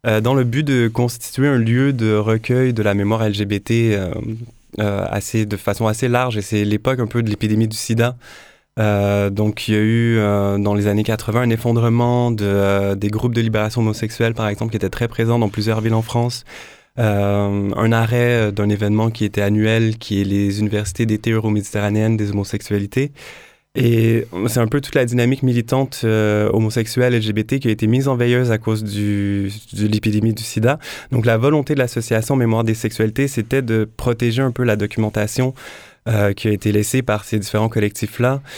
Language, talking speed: French, 195 wpm